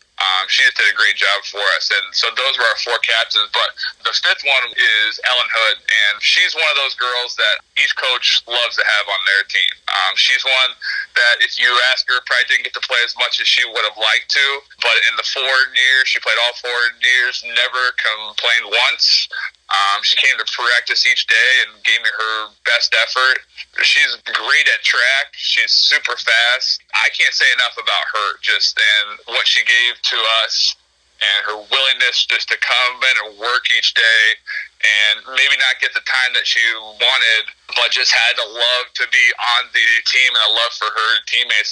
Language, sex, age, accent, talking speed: English, male, 30-49, American, 205 wpm